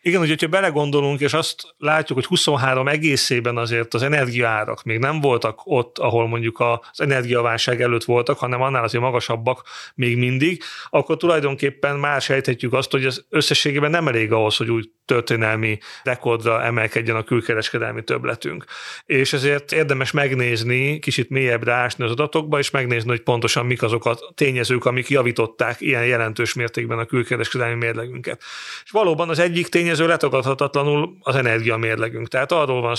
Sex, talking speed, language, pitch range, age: male, 150 wpm, Hungarian, 120-150 Hz, 30-49